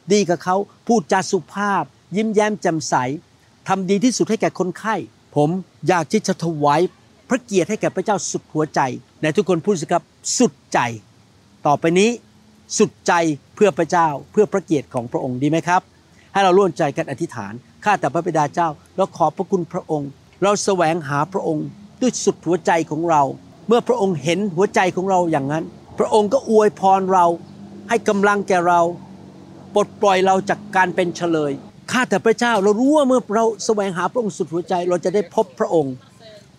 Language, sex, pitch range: Thai, male, 160-205 Hz